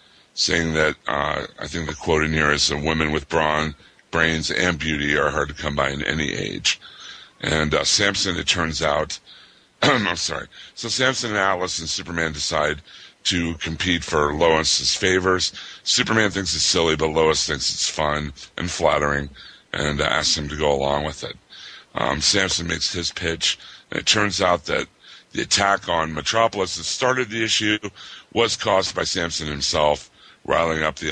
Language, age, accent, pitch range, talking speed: English, 60-79, American, 75-90 Hz, 175 wpm